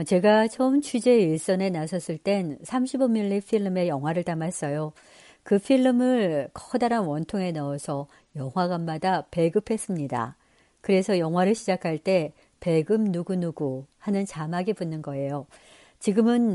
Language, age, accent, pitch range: Korean, 60-79, native, 155-220 Hz